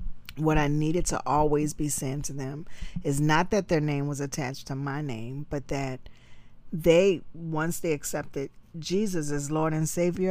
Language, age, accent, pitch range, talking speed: English, 40-59, American, 135-170 Hz, 175 wpm